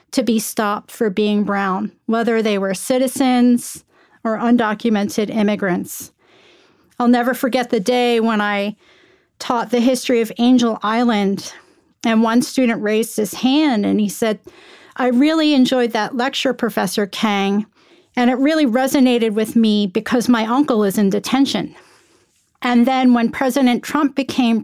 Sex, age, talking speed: female, 40-59, 145 wpm